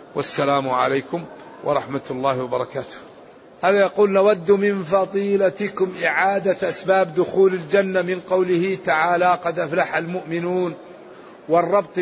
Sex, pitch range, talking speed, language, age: male, 165-195 Hz, 105 wpm, Arabic, 50-69